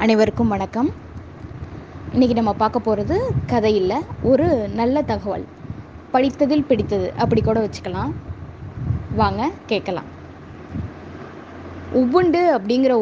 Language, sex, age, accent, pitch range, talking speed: Tamil, female, 20-39, native, 225-300 Hz, 90 wpm